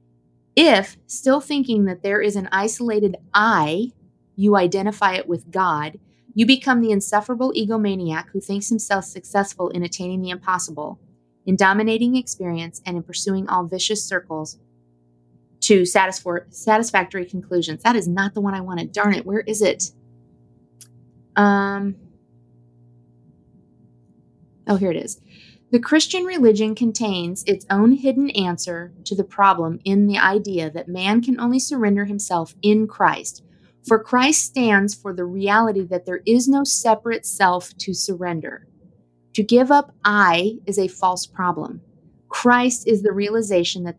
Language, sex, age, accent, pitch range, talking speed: English, female, 30-49, American, 175-215 Hz, 145 wpm